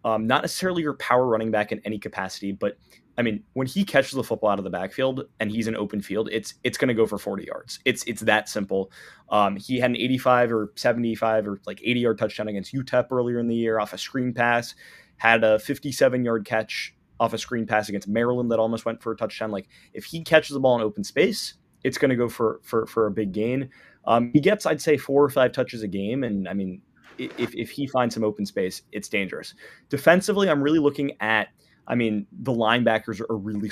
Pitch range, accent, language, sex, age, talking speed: 105-125 Hz, American, English, male, 20-39, 235 wpm